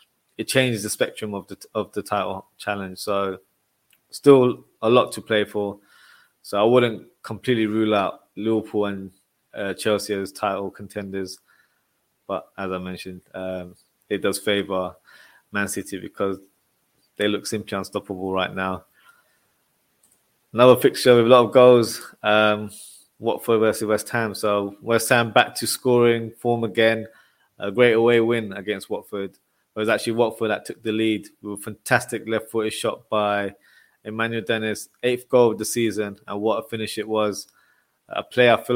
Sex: male